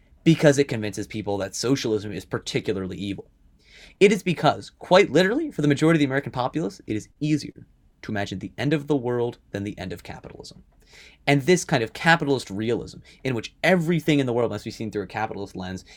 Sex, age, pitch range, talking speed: male, 30-49, 110-150 Hz, 205 wpm